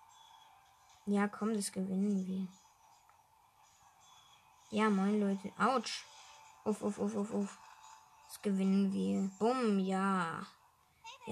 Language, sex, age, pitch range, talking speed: English, female, 20-39, 190-295 Hz, 110 wpm